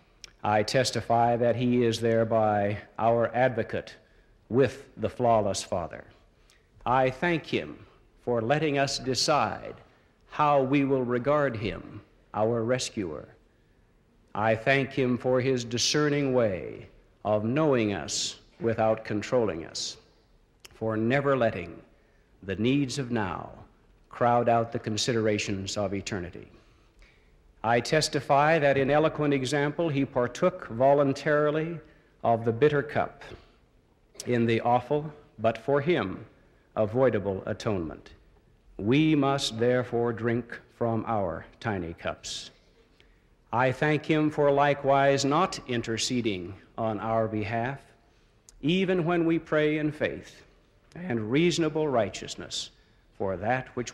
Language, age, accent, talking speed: English, 60-79, American, 115 wpm